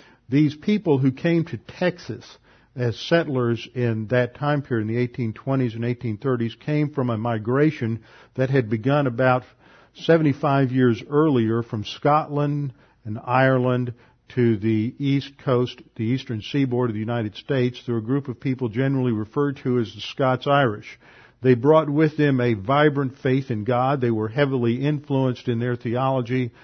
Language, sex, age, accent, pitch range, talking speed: English, male, 50-69, American, 115-140 Hz, 160 wpm